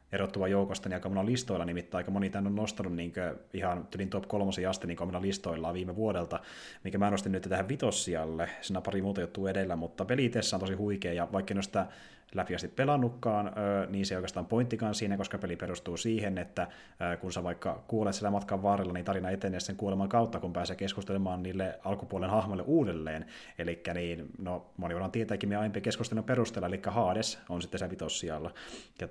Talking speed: 195 wpm